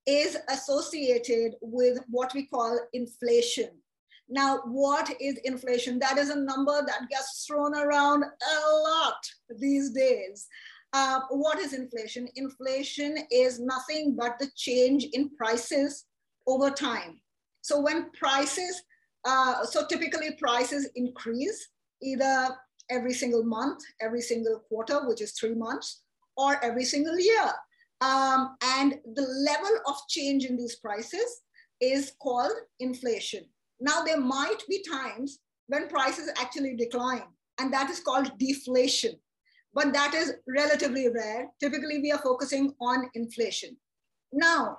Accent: Indian